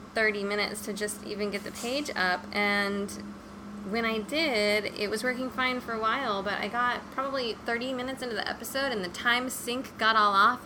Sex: female